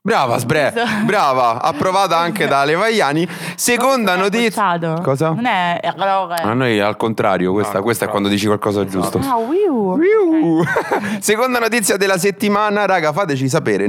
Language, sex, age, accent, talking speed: Italian, male, 30-49, native, 130 wpm